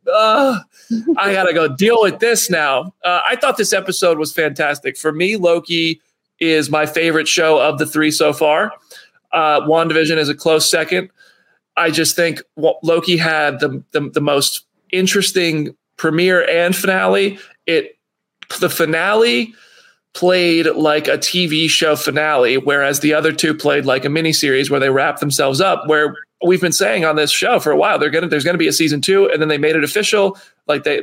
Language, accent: English, American